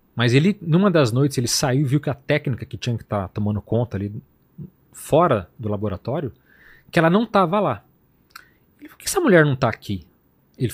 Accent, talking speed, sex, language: Brazilian, 205 wpm, male, Portuguese